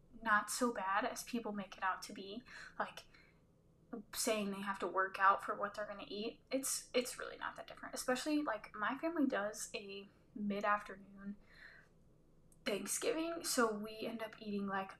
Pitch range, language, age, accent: 200-265 Hz, English, 10-29, American